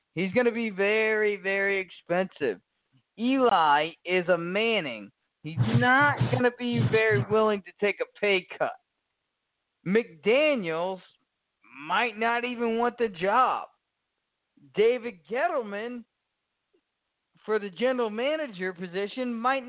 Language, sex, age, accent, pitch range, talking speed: English, male, 40-59, American, 170-235 Hz, 115 wpm